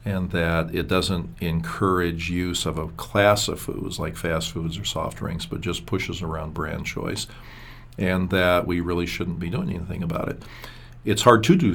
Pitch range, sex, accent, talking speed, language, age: 85-95 Hz, male, American, 190 wpm, English, 50-69